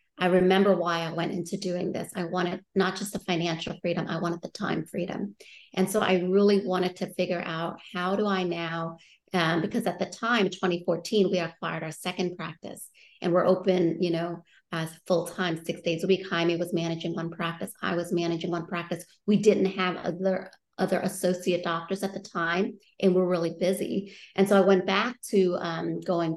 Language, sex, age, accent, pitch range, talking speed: English, female, 30-49, American, 175-195 Hz, 200 wpm